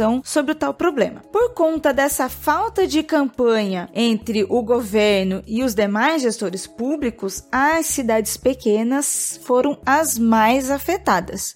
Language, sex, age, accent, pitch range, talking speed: Portuguese, female, 20-39, Brazilian, 205-280 Hz, 130 wpm